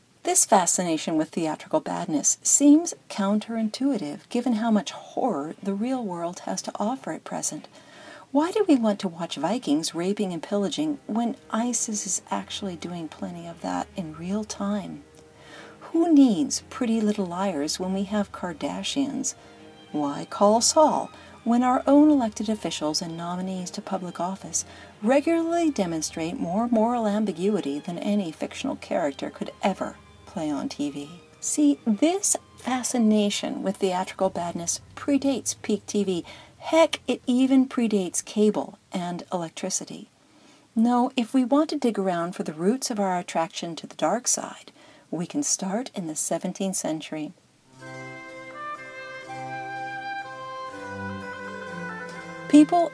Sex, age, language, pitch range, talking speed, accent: female, 50-69, English, 175-260 Hz, 135 wpm, American